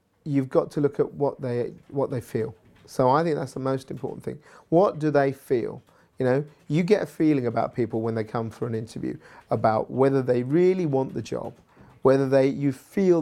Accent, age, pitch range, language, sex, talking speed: British, 40-59, 125-165 Hz, English, male, 215 wpm